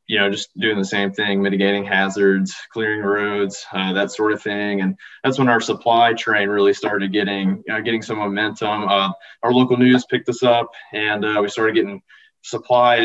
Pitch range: 100-115 Hz